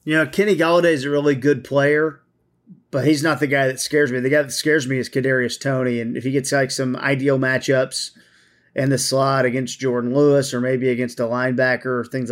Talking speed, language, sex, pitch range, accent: 225 wpm, English, male, 130-150 Hz, American